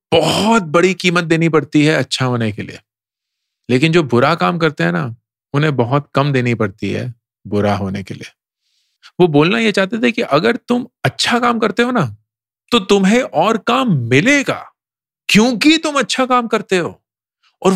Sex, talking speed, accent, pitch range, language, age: male, 175 wpm, Indian, 115-185 Hz, English, 40-59